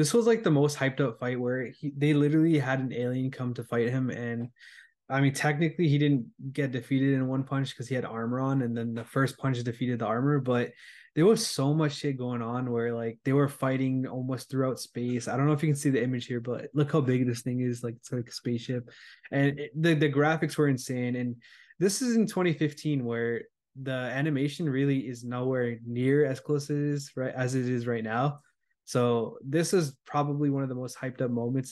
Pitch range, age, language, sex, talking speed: 120-145 Hz, 20-39, English, male, 220 wpm